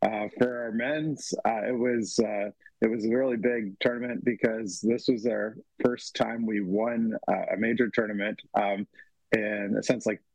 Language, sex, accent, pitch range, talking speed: English, male, American, 110-125 Hz, 175 wpm